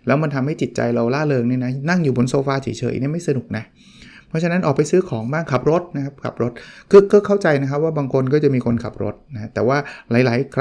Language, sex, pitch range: Thai, male, 120-150 Hz